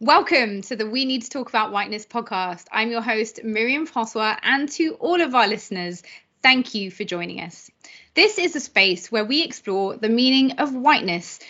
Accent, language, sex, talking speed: British, English, female, 195 wpm